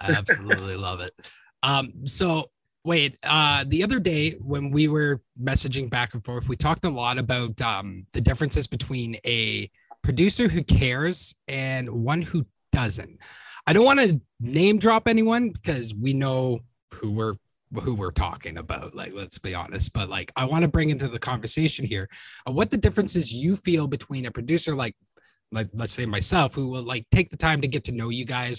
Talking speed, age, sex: 190 wpm, 20-39, male